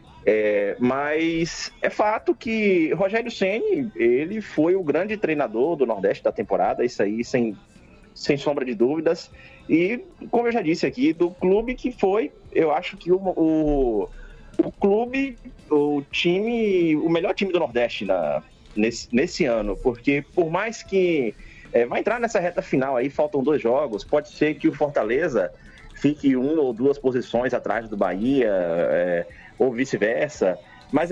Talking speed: 160 wpm